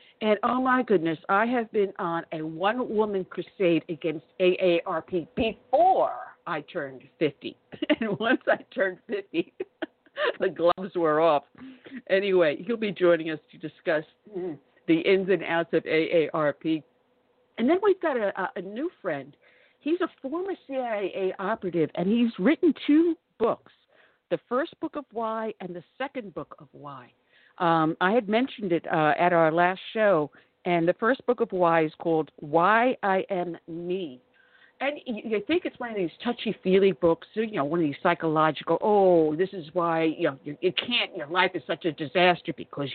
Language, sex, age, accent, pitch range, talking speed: English, female, 50-69, American, 165-230 Hz, 170 wpm